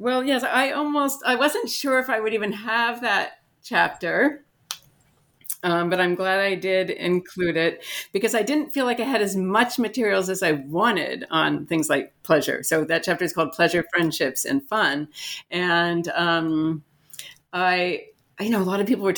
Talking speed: 180 wpm